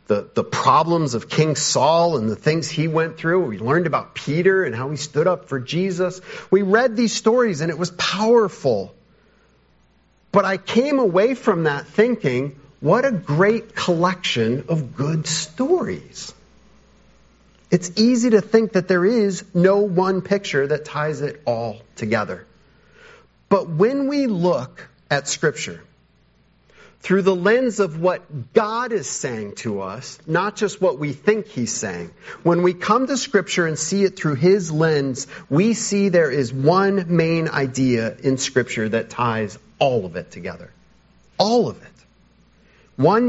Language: English